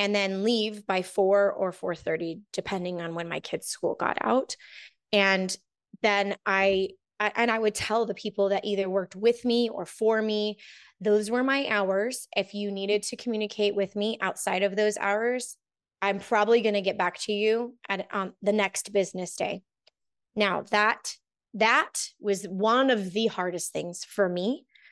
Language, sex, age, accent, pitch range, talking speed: English, female, 20-39, American, 195-225 Hz, 180 wpm